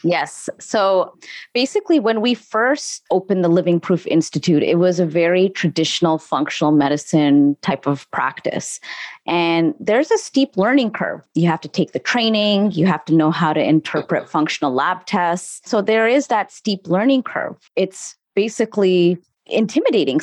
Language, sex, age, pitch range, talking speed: English, female, 30-49, 155-185 Hz, 155 wpm